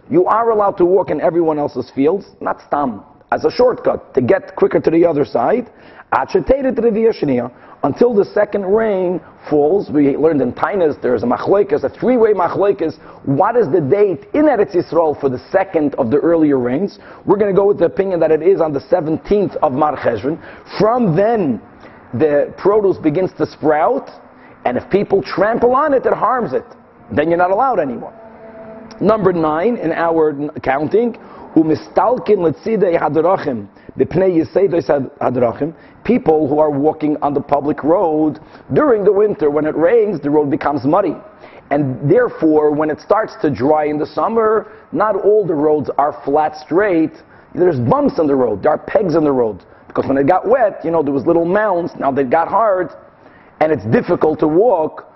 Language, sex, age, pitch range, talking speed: English, male, 40-59, 150-215 Hz, 170 wpm